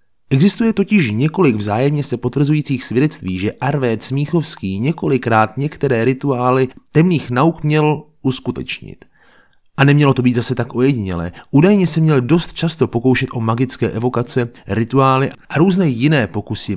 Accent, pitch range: native, 110-140 Hz